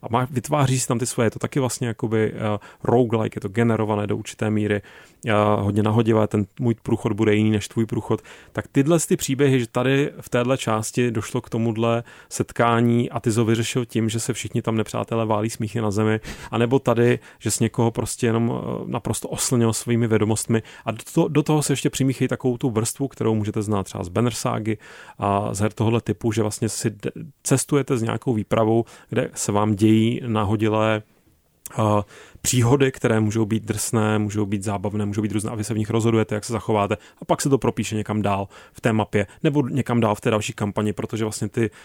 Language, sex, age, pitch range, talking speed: Czech, male, 30-49, 105-120 Hz, 210 wpm